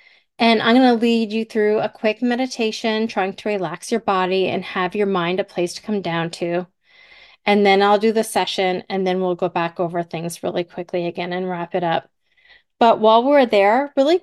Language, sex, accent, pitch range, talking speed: English, female, American, 185-235 Hz, 210 wpm